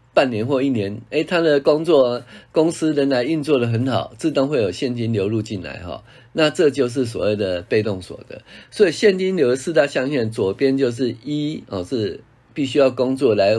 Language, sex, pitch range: Chinese, male, 115-140 Hz